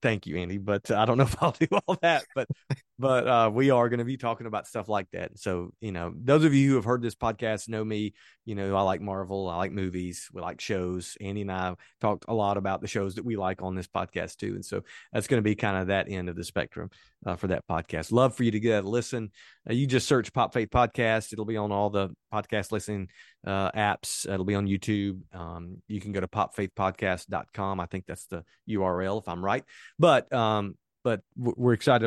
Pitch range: 95-115 Hz